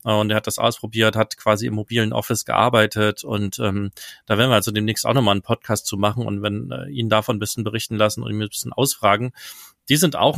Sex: male